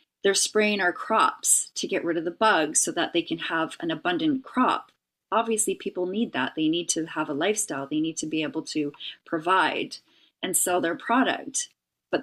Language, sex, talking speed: English, female, 195 wpm